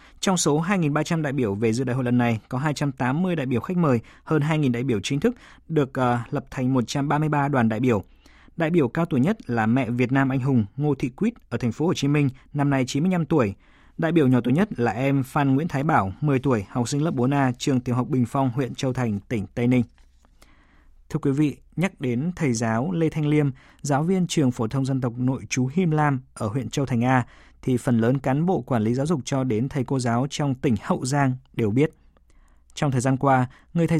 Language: Vietnamese